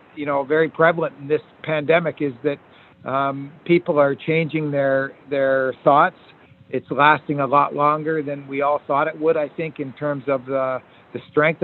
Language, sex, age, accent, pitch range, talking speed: English, male, 60-79, American, 140-155 Hz, 180 wpm